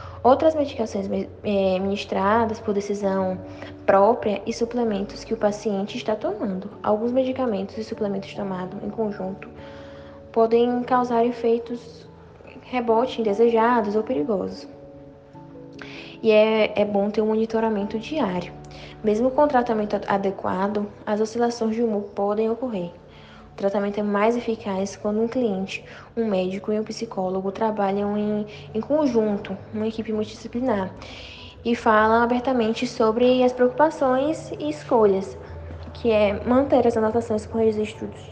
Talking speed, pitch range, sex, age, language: 125 wpm, 195-235 Hz, female, 10-29, Portuguese